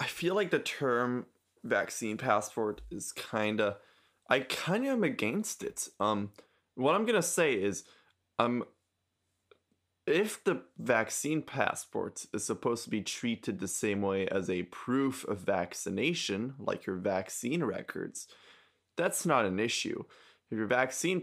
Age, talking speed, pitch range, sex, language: 20-39, 145 wpm, 95-130 Hz, male, English